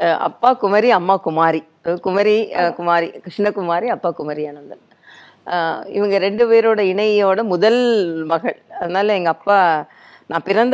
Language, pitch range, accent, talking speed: Tamil, 170-235 Hz, native, 115 wpm